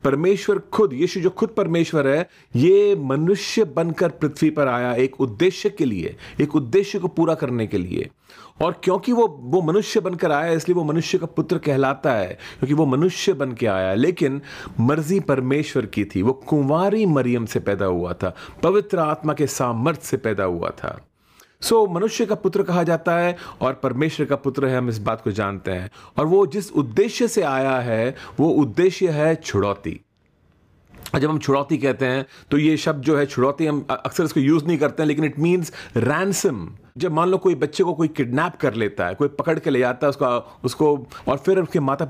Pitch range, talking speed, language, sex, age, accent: 125-170 Hz, 195 wpm, Hindi, male, 40-59, native